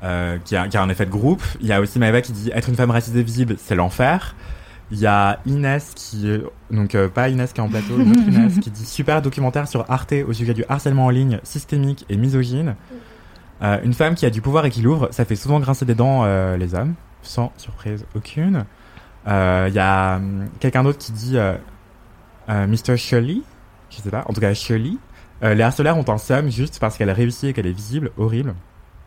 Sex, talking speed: male, 225 wpm